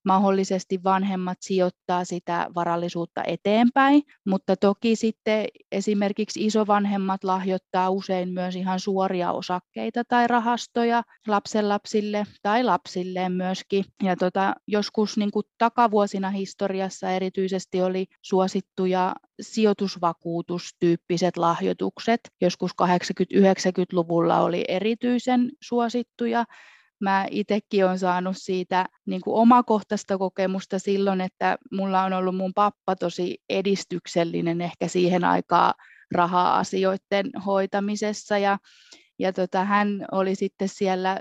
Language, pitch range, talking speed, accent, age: English, 180-210 Hz, 100 wpm, Finnish, 30-49